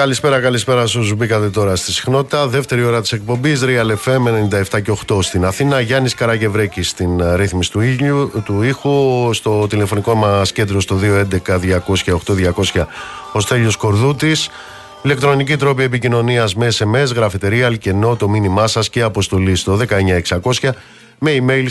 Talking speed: 140 wpm